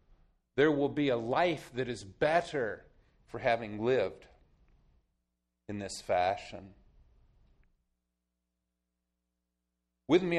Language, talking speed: English, 90 wpm